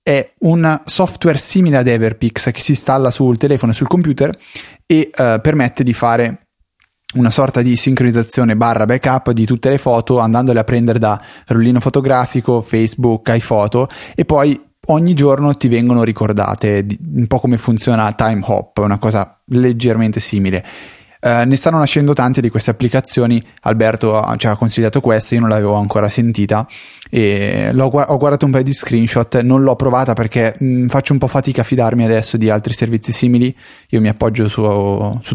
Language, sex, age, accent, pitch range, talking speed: Italian, male, 20-39, native, 110-135 Hz, 170 wpm